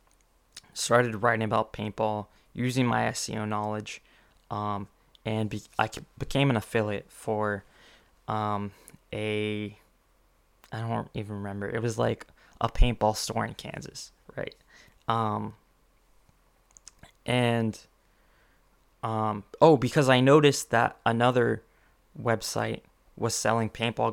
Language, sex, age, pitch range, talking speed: English, male, 20-39, 105-120 Hz, 105 wpm